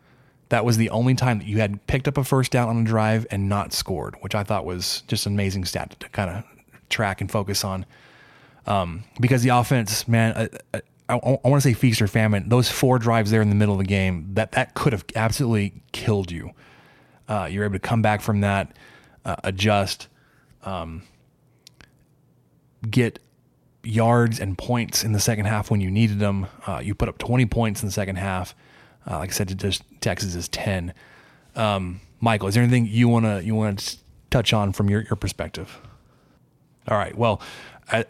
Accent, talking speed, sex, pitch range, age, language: American, 205 wpm, male, 100-115 Hz, 20-39, English